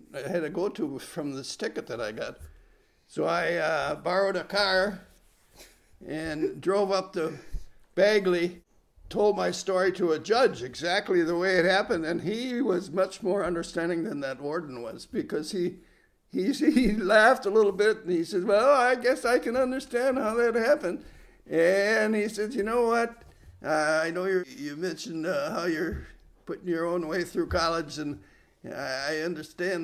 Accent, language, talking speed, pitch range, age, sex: American, English, 170 wpm, 150-200 Hz, 60-79, male